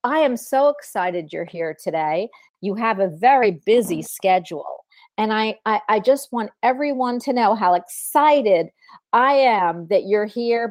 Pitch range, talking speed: 185-245 Hz, 165 wpm